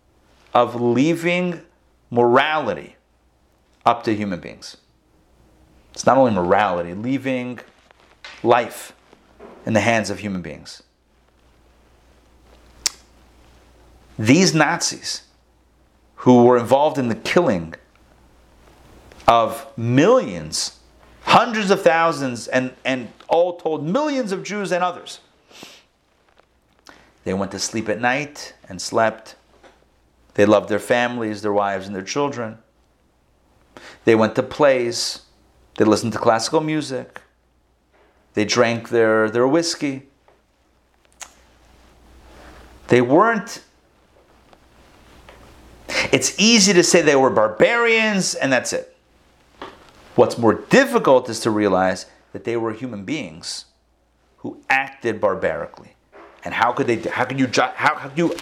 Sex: male